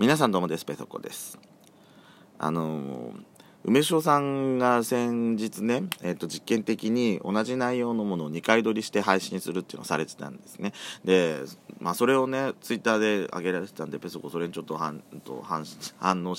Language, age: Japanese, 40-59